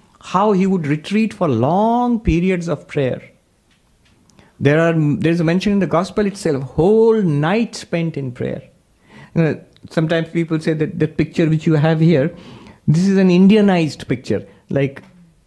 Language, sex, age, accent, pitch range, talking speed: English, male, 50-69, Indian, 130-185 Hz, 160 wpm